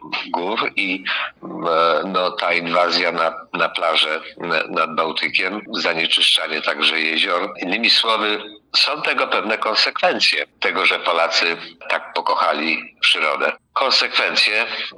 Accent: Polish